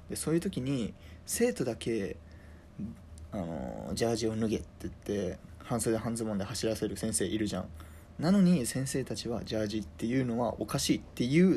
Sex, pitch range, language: male, 95-145 Hz, Japanese